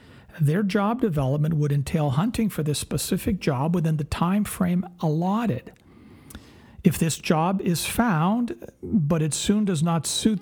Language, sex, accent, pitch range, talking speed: English, male, American, 155-210 Hz, 150 wpm